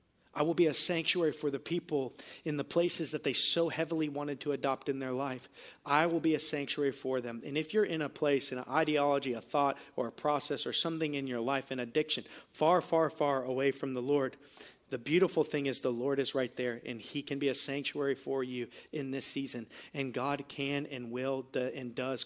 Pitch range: 125-145 Hz